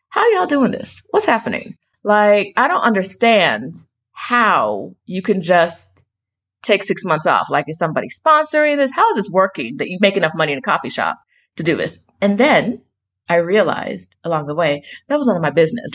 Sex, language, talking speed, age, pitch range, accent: female, English, 200 wpm, 30-49, 150-220 Hz, American